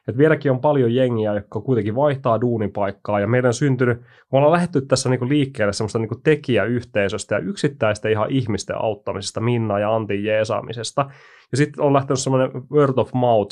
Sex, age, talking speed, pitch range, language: male, 30-49, 165 wpm, 110-130 Hz, Finnish